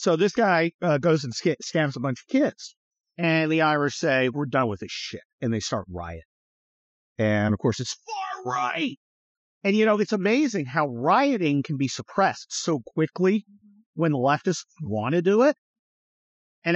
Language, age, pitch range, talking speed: English, 50-69, 140-195 Hz, 185 wpm